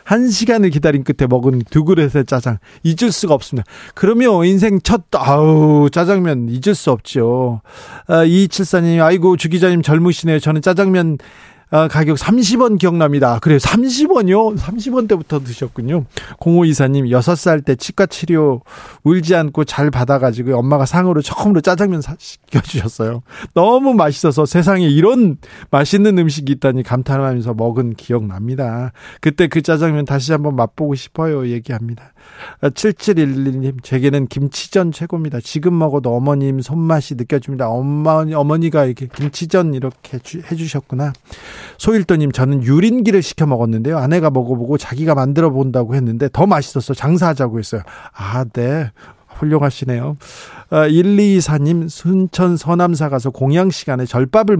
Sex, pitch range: male, 130-175 Hz